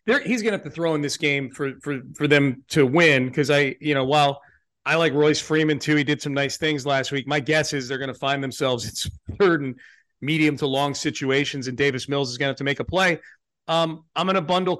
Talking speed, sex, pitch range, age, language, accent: 255 wpm, male, 135-155 Hz, 40-59, English, American